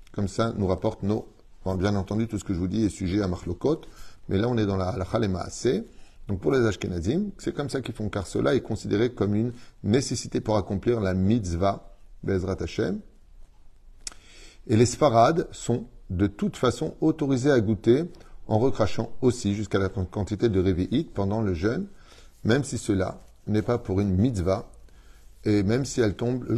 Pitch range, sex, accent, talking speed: 95-115 Hz, male, French, 185 wpm